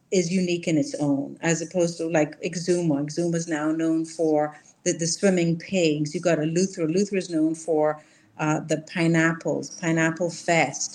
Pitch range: 155-180 Hz